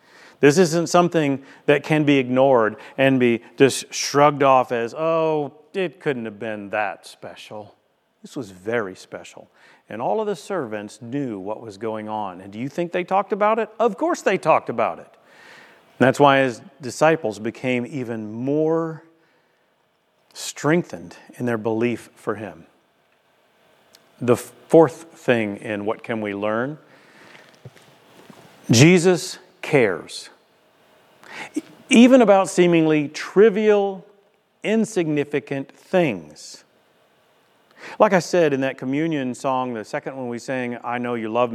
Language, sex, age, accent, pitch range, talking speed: English, male, 40-59, American, 130-205 Hz, 135 wpm